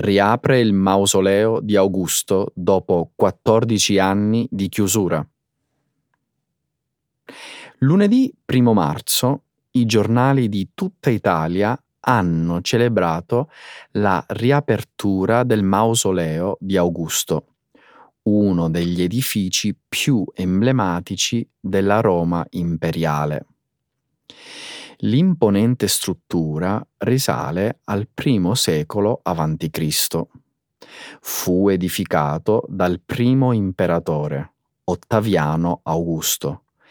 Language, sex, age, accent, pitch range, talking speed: Italian, male, 30-49, native, 85-115 Hz, 80 wpm